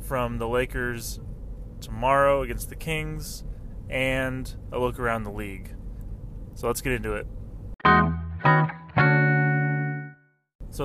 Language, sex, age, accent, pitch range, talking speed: English, male, 20-39, American, 105-125 Hz, 105 wpm